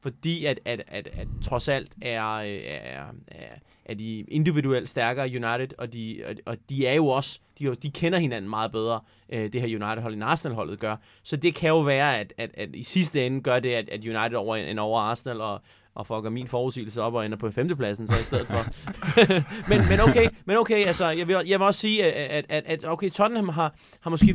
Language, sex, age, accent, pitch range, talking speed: Danish, male, 20-39, native, 125-160 Hz, 220 wpm